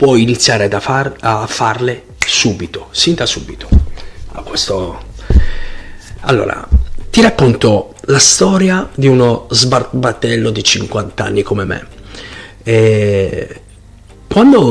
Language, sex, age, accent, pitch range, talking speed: Italian, male, 40-59, native, 100-130 Hz, 115 wpm